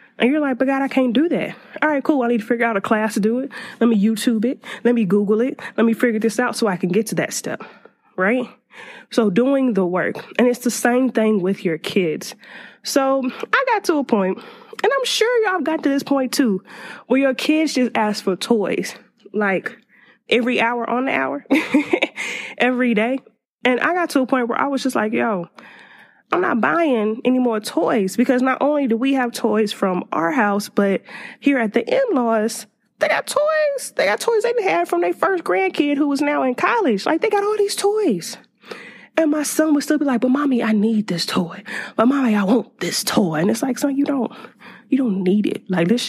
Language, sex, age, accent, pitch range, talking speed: English, female, 20-39, American, 220-280 Hz, 225 wpm